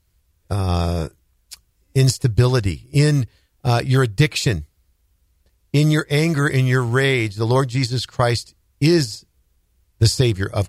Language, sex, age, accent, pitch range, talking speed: English, male, 50-69, American, 100-130 Hz, 110 wpm